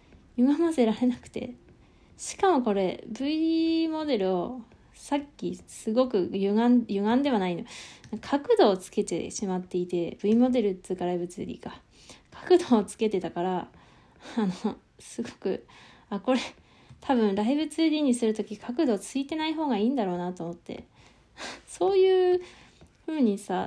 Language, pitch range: Japanese, 190-275 Hz